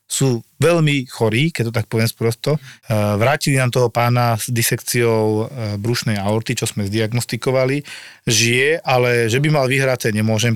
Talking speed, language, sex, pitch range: 150 wpm, Slovak, male, 115-140 Hz